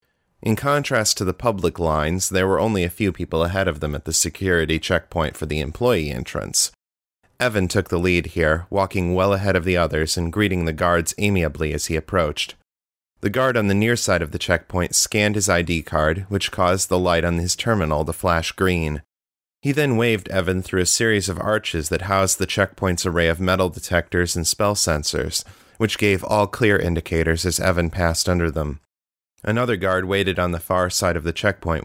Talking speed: 200 wpm